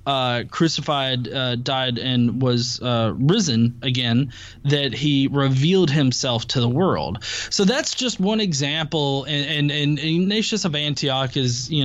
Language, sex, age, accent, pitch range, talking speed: English, male, 20-39, American, 130-180 Hz, 145 wpm